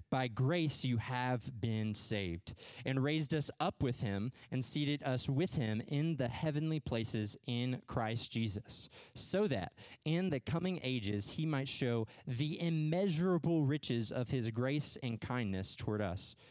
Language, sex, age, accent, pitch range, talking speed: English, male, 20-39, American, 110-140 Hz, 155 wpm